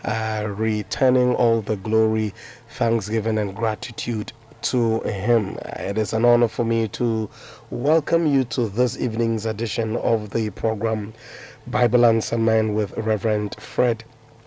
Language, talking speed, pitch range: English, 135 wpm, 110-120 Hz